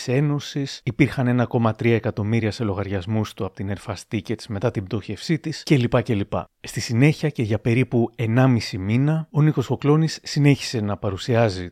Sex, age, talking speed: male, 30-49, 150 wpm